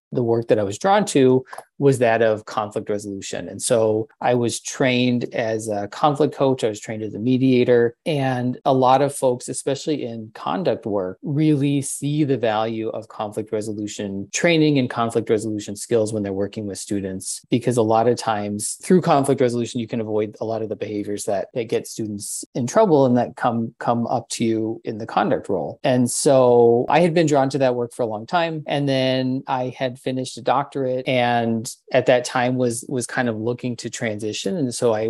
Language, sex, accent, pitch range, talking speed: English, male, American, 110-135 Hz, 205 wpm